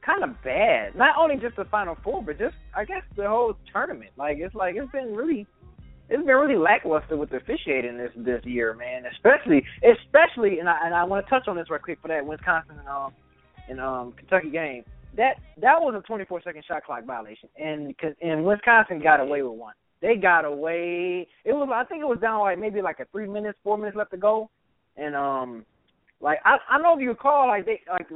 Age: 20-39